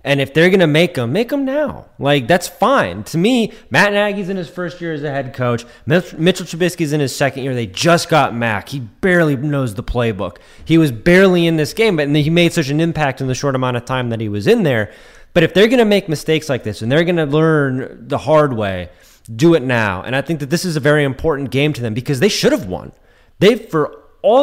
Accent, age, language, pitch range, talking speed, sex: American, 20-39, English, 130-175 Hz, 245 wpm, male